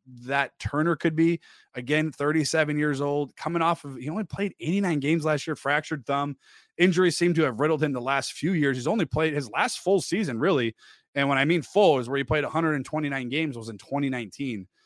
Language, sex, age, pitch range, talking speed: English, male, 20-39, 120-155 Hz, 210 wpm